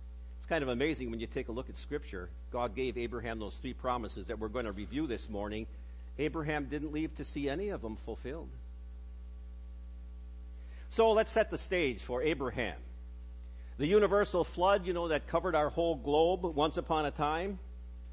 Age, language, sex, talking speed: 50-69, English, male, 175 wpm